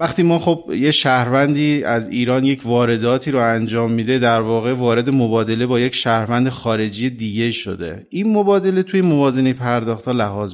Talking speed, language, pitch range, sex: 160 wpm, Persian, 115-150 Hz, male